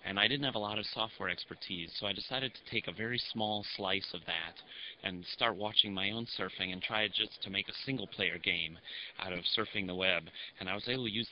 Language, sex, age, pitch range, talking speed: English, male, 30-49, 95-115 Hz, 240 wpm